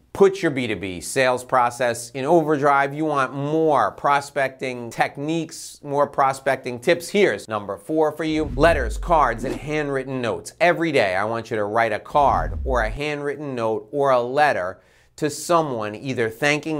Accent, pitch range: American, 125-155 Hz